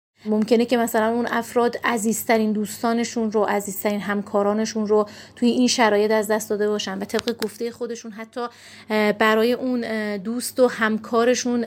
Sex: female